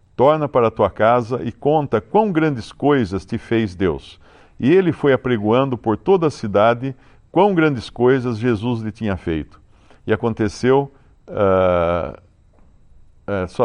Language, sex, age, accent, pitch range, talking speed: Portuguese, male, 60-79, Brazilian, 90-120 Hz, 135 wpm